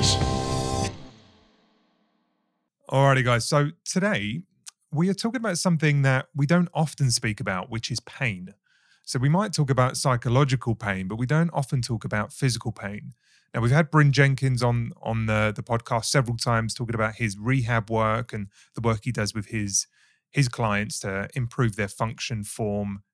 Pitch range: 110-135 Hz